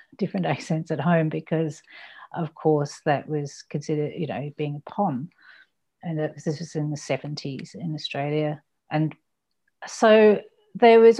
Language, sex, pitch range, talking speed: English, female, 145-175 Hz, 145 wpm